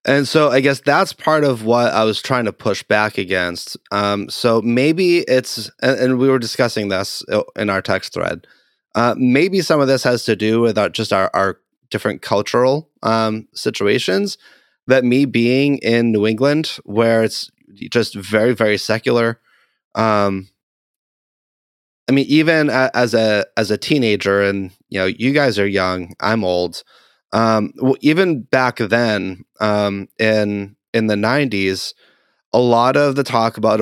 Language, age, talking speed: English, 20-39, 165 wpm